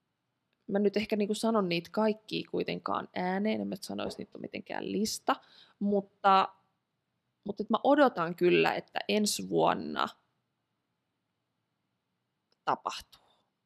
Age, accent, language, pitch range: 20-39, native, Finnish, 185-215 Hz